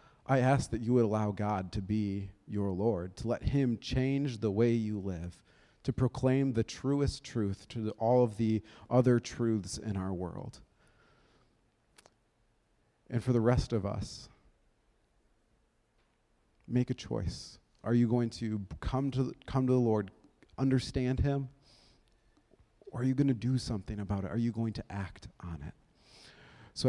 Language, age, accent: English, 40-59, American